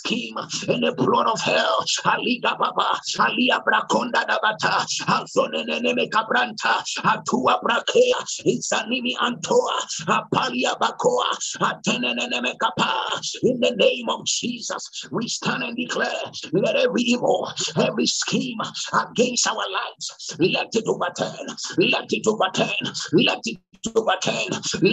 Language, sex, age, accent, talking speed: English, male, 50-69, American, 125 wpm